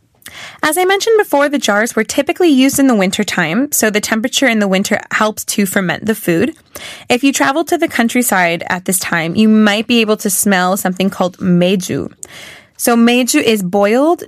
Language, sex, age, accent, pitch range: Korean, female, 20-39, American, 185-235 Hz